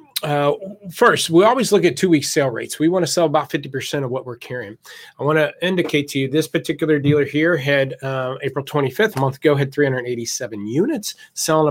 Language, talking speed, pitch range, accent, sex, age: English, 200 wpm, 130-170 Hz, American, male, 30-49